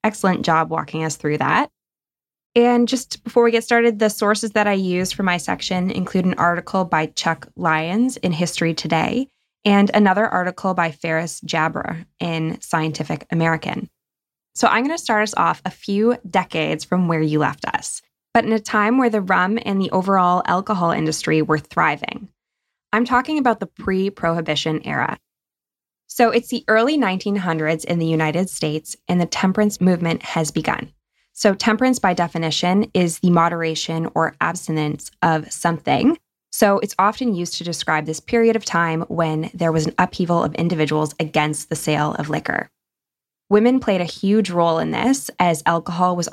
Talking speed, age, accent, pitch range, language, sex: 170 wpm, 20-39, American, 160-210 Hz, English, female